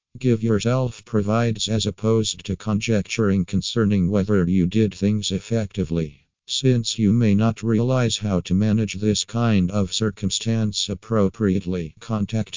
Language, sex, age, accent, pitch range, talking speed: English, male, 50-69, American, 95-110 Hz, 130 wpm